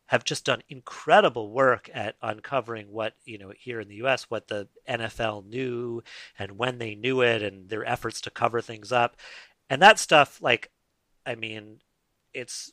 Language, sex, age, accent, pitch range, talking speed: English, male, 40-59, American, 110-150 Hz, 180 wpm